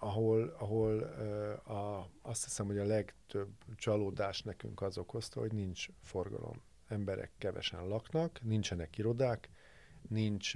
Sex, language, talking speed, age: male, Hungarian, 125 wpm, 50-69